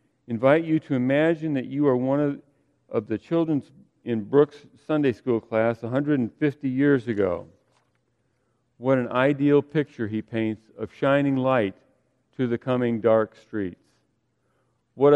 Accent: American